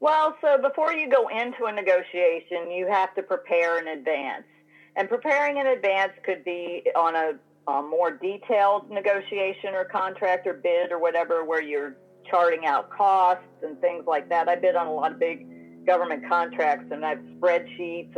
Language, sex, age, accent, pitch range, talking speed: English, female, 50-69, American, 175-245 Hz, 180 wpm